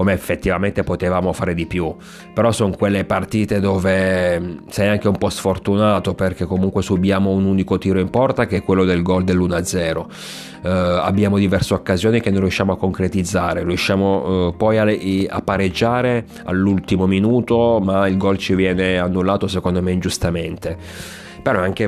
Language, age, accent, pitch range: Italian, 30-49, native, 90-100 Hz